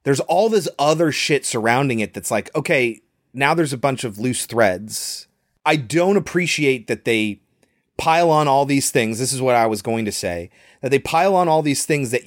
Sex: male